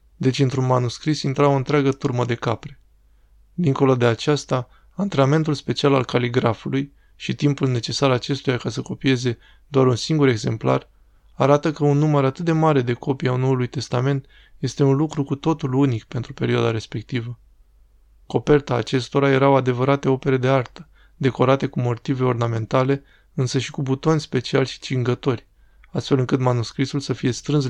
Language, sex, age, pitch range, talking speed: Romanian, male, 20-39, 120-140 Hz, 155 wpm